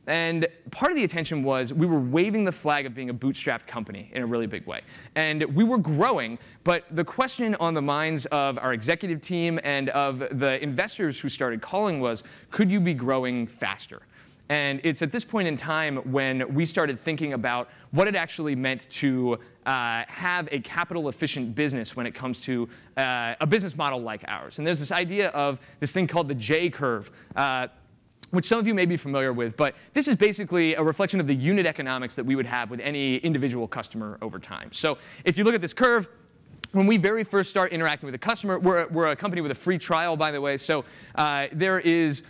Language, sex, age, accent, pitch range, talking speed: English, male, 20-39, American, 130-175 Hz, 210 wpm